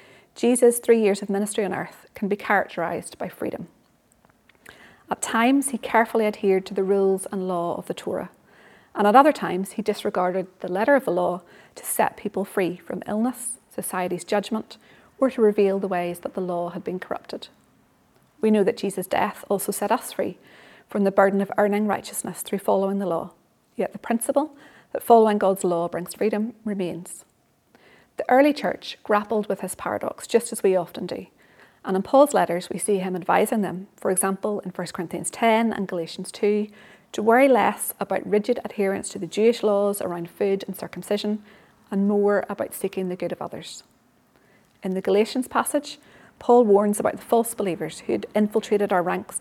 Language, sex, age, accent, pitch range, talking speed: English, female, 30-49, British, 185-220 Hz, 185 wpm